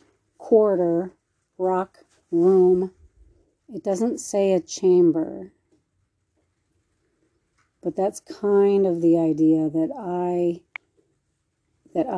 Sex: female